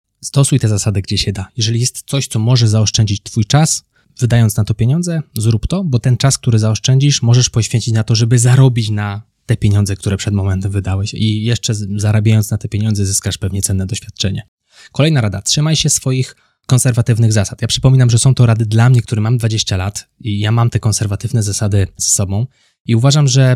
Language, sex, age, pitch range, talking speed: Polish, male, 20-39, 110-135 Hz, 200 wpm